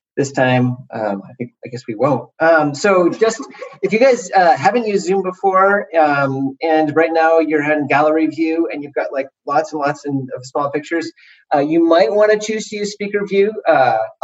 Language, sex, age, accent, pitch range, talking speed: English, male, 30-49, American, 135-180 Hz, 210 wpm